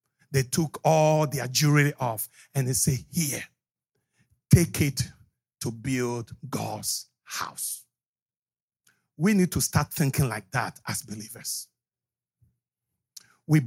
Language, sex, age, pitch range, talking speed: English, male, 50-69, 140-240 Hz, 115 wpm